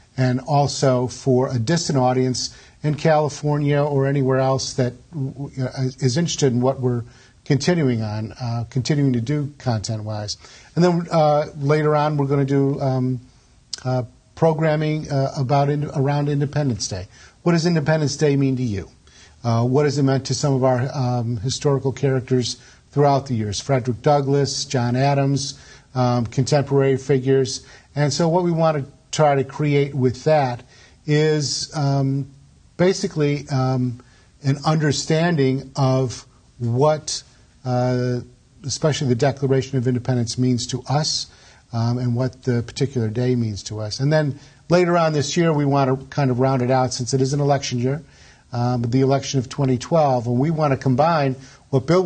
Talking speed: 160 wpm